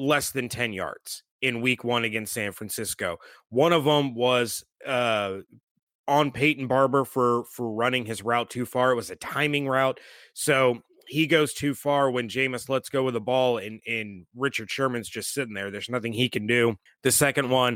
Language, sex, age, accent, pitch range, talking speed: English, male, 30-49, American, 120-145 Hz, 195 wpm